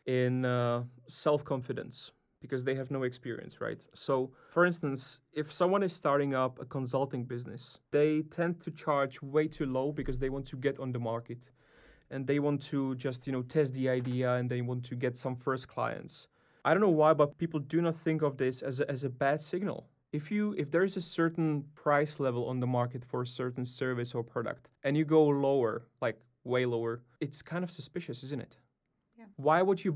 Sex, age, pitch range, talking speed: male, 20-39, 130-150 Hz, 210 wpm